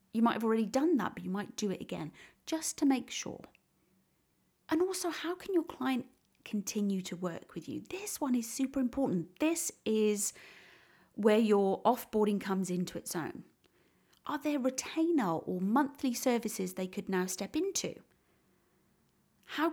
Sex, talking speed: female, 160 wpm